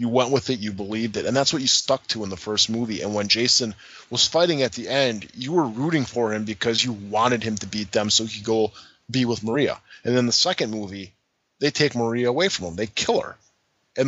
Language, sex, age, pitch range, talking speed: English, male, 20-39, 105-130 Hz, 250 wpm